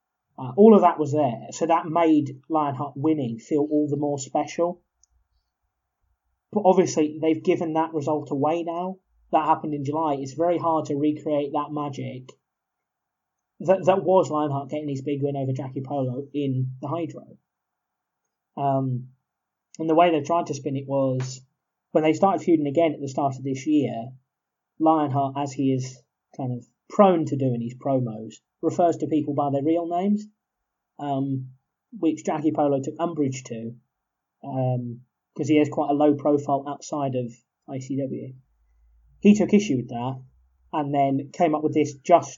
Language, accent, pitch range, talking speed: English, British, 130-165 Hz, 165 wpm